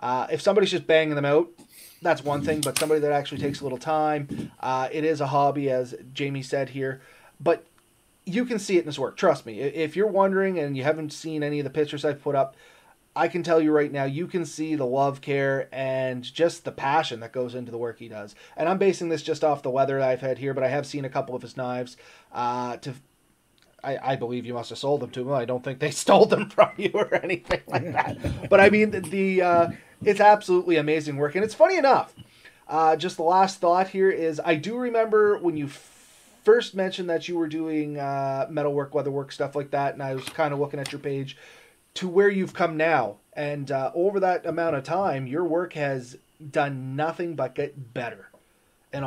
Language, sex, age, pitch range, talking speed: English, male, 30-49, 135-170 Hz, 230 wpm